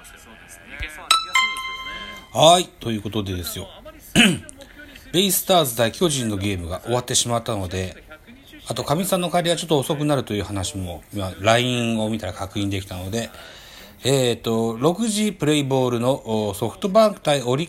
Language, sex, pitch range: Japanese, male, 95-140 Hz